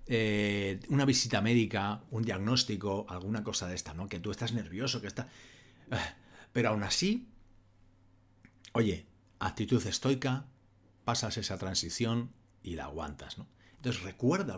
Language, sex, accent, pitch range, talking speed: Spanish, male, Spanish, 90-120 Hz, 130 wpm